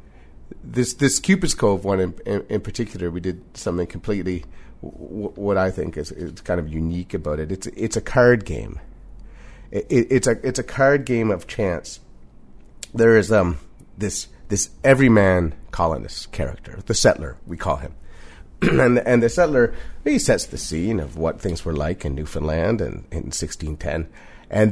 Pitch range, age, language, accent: 90-130 Hz, 30-49, English, American